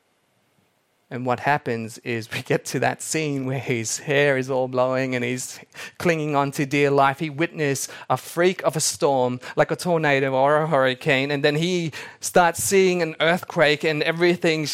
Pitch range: 130-170 Hz